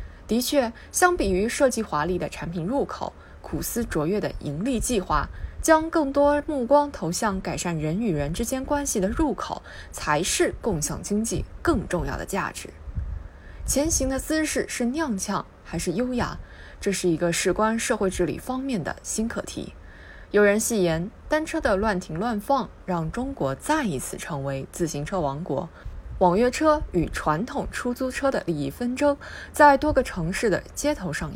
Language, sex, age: Chinese, female, 20-39